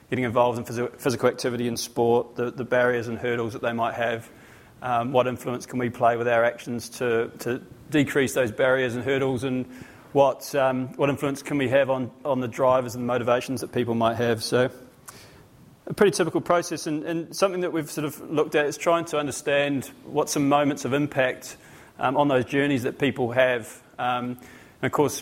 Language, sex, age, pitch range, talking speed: English, male, 30-49, 125-140 Hz, 200 wpm